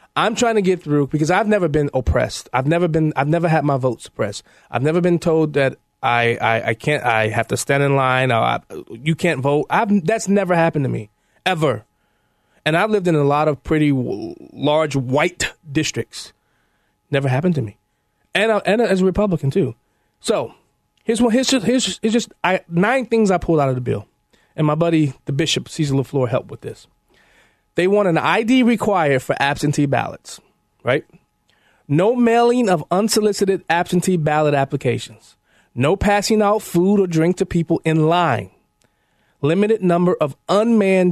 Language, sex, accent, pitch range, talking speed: English, male, American, 140-200 Hz, 185 wpm